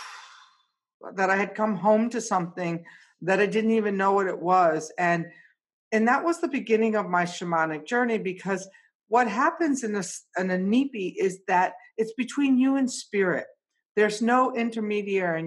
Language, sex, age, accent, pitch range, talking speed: English, female, 50-69, American, 185-235 Hz, 160 wpm